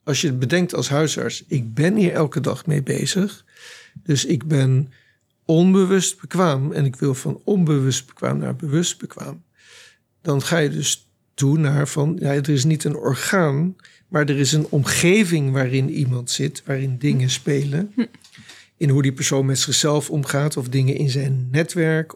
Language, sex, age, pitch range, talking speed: Dutch, male, 60-79, 135-160 Hz, 170 wpm